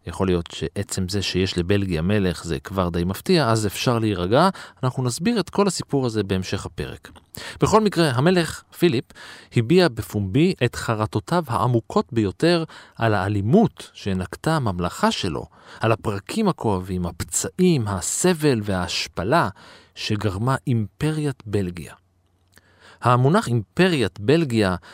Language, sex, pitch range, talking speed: Hebrew, male, 95-145 Hz, 120 wpm